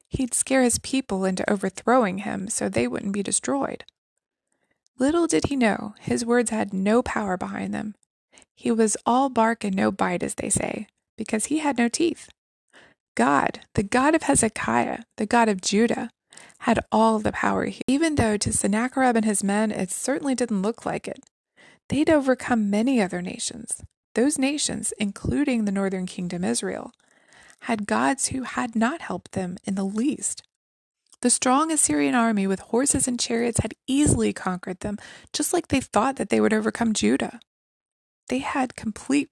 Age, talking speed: 20-39, 170 wpm